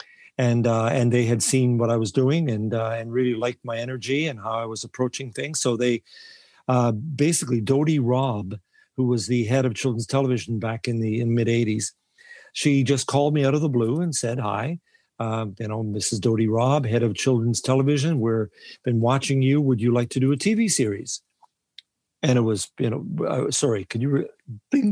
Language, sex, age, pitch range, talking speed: English, male, 50-69, 120-145 Hz, 205 wpm